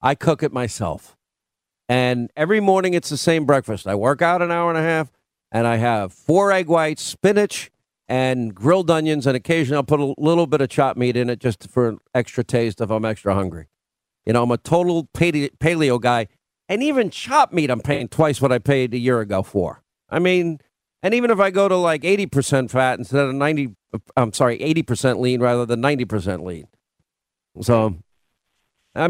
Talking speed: 195 wpm